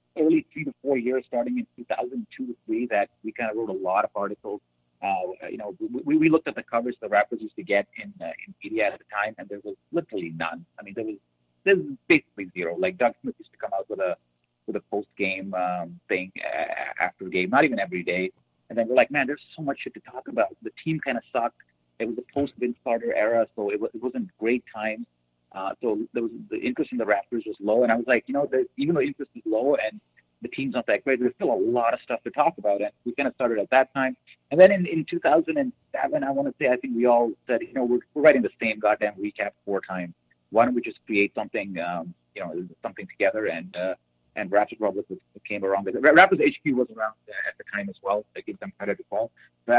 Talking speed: 255 wpm